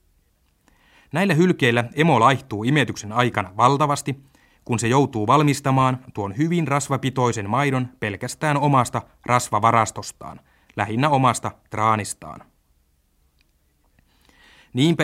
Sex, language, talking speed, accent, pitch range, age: male, Finnish, 90 wpm, native, 105-140 Hz, 30-49